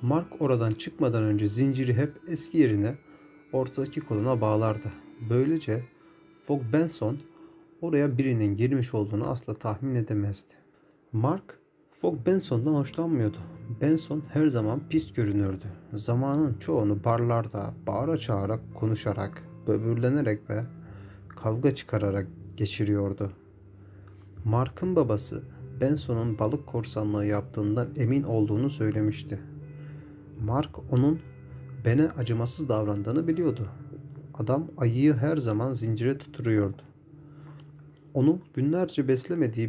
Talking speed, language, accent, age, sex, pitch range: 100 wpm, Turkish, native, 40-59, male, 110-145 Hz